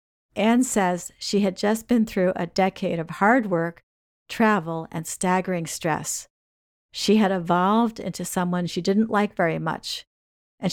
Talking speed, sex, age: 150 wpm, female, 50-69